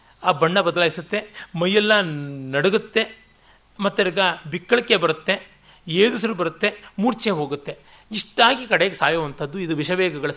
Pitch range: 150-200 Hz